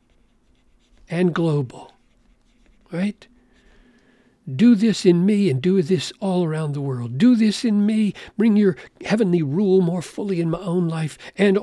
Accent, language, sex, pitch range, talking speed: American, English, male, 140-195 Hz, 150 wpm